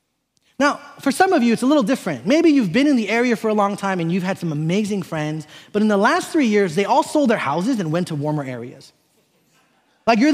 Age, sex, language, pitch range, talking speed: 30-49, male, English, 160-240 Hz, 250 wpm